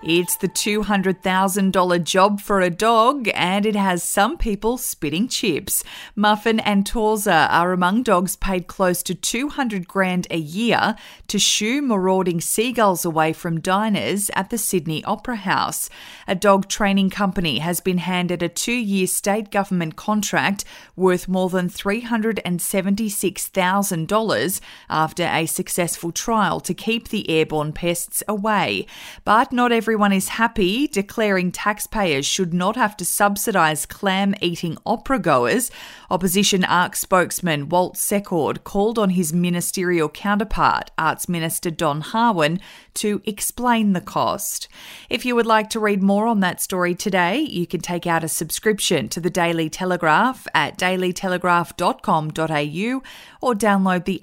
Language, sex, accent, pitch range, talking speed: English, female, Australian, 175-215 Hz, 140 wpm